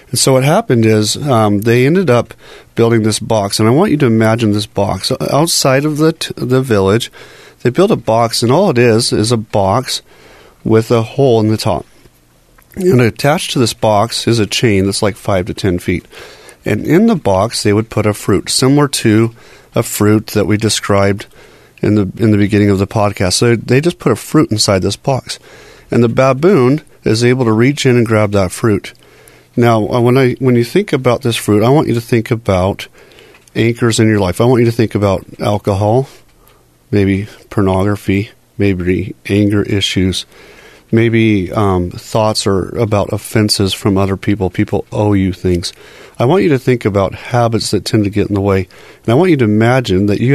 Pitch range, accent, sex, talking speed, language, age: 100-120 Hz, American, male, 200 wpm, English, 30-49